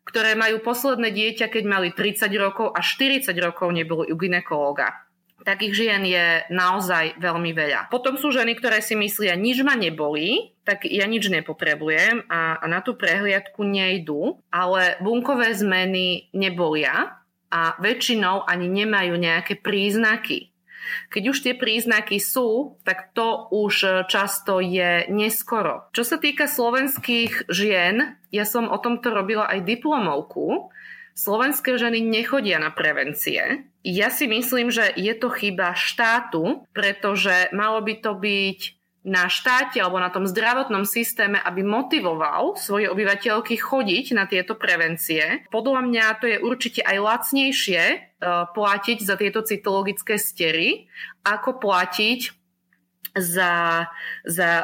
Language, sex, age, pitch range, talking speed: Slovak, female, 30-49, 180-235 Hz, 135 wpm